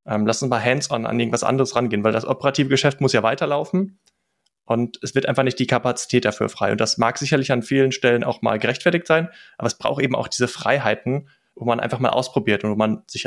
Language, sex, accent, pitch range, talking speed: German, male, German, 115-140 Hz, 230 wpm